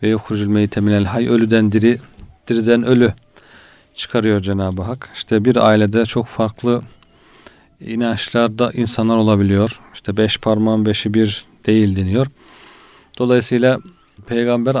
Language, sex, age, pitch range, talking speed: Turkish, male, 40-59, 110-125 Hz, 110 wpm